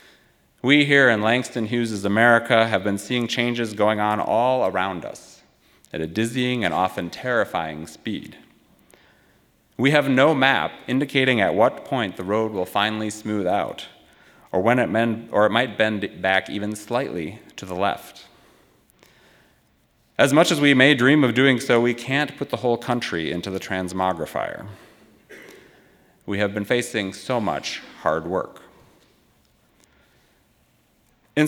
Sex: male